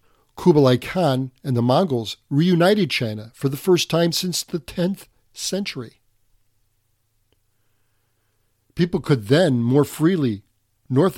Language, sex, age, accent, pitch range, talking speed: English, male, 50-69, American, 110-155 Hz, 115 wpm